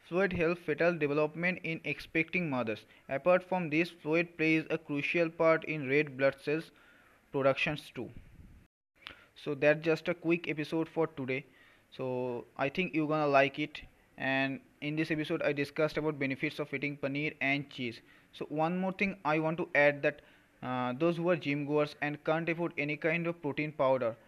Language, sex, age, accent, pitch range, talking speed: Hindi, male, 20-39, native, 140-160 Hz, 180 wpm